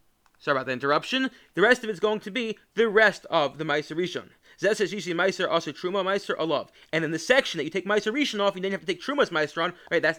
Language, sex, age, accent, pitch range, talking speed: English, male, 30-49, American, 155-210 Hz, 260 wpm